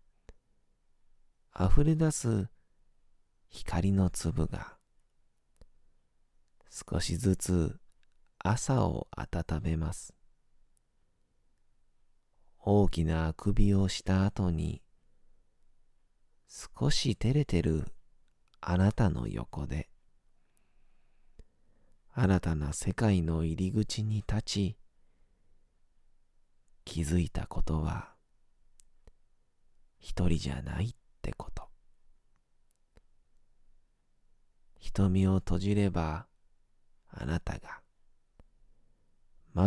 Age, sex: 40-59, male